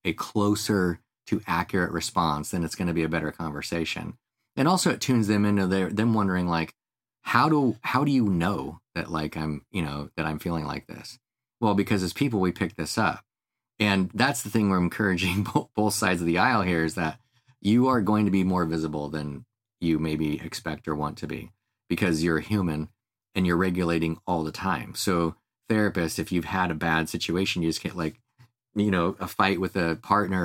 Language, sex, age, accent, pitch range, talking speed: English, male, 30-49, American, 85-110 Hz, 205 wpm